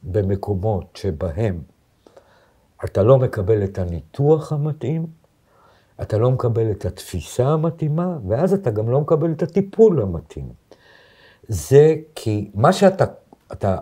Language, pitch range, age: Hebrew, 95-140 Hz, 60-79